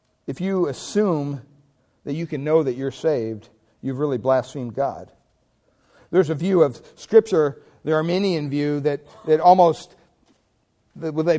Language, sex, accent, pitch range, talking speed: English, male, American, 125-190 Hz, 135 wpm